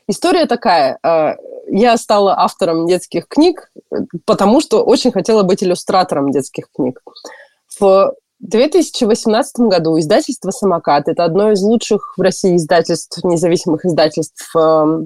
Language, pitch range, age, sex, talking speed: Russian, 165-255 Hz, 30-49, female, 115 wpm